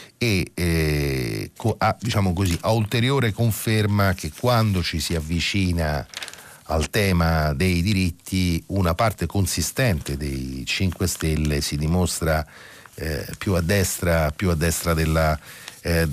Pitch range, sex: 80-110 Hz, male